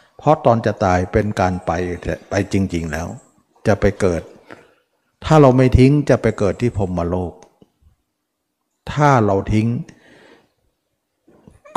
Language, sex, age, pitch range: Thai, male, 60-79, 95-130 Hz